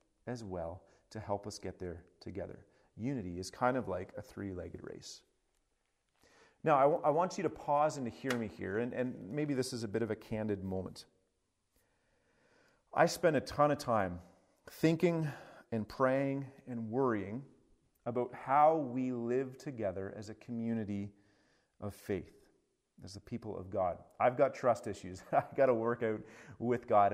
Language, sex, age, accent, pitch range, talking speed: English, male, 40-59, American, 100-135 Hz, 170 wpm